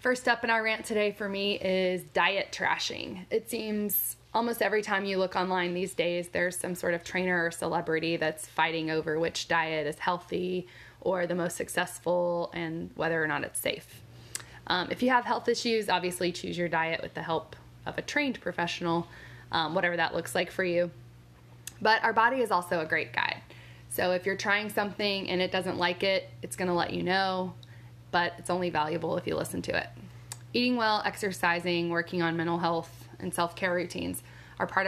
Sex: female